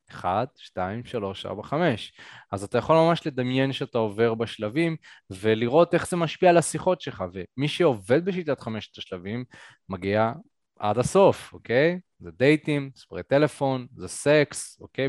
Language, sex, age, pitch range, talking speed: Hebrew, male, 20-39, 105-155 Hz, 145 wpm